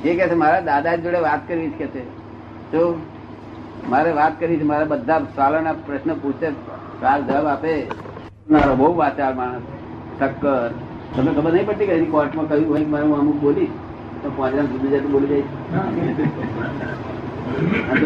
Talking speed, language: 45 wpm, Gujarati